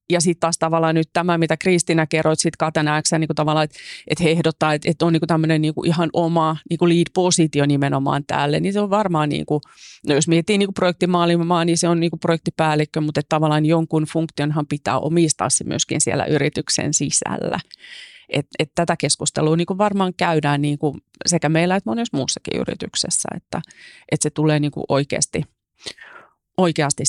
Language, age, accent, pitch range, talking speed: Finnish, 30-49, native, 150-170 Hz, 160 wpm